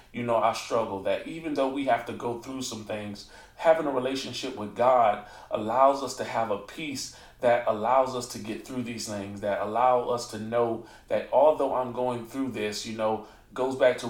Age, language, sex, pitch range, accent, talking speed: 30-49, English, male, 120-145 Hz, American, 210 wpm